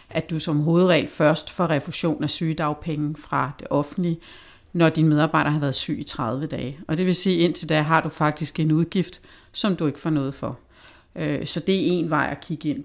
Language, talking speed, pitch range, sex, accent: Danish, 220 wpm, 150-185 Hz, female, native